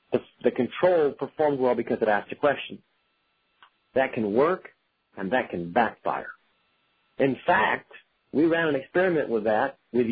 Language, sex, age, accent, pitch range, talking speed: English, male, 50-69, American, 125-165 Hz, 150 wpm